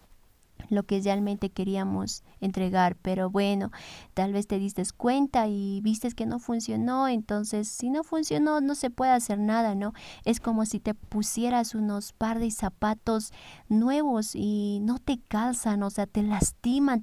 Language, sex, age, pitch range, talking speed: Spanish, female, 20-39, 205-235 Hz, 160 wpm